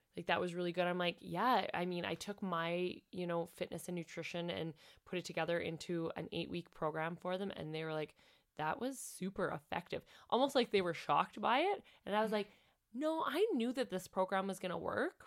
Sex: female